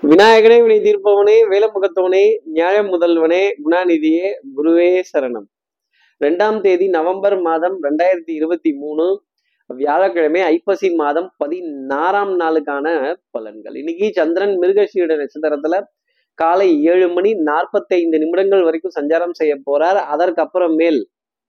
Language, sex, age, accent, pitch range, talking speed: Tamil, male, 20-39, native, 155-230 Hz, 105 wpm